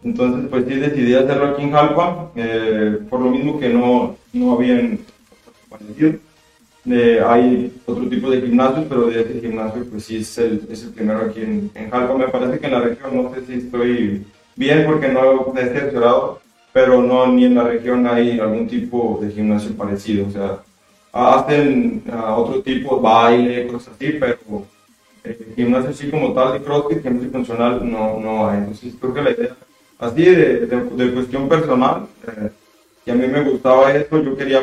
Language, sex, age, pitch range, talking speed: Spanish, male, 30-49, 115-135 Hz, 190 wpm